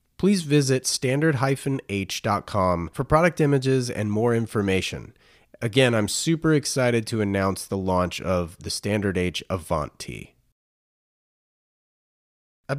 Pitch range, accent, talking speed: 100-135 Hz, American, 110 wpm